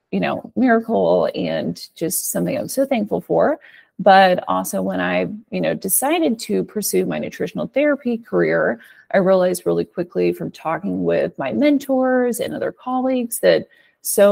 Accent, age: American, 30-49